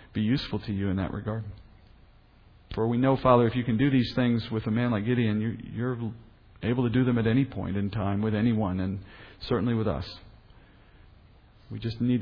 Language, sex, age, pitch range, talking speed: English, male, 40-59, 105-145 Hz, 205 wpm